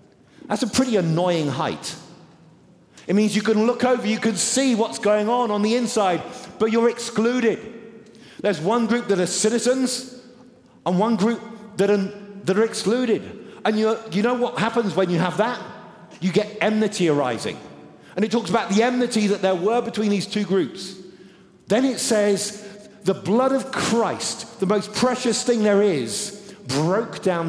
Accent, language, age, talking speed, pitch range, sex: British, English, 40-59, 170 wpm, 180-230 Hz, male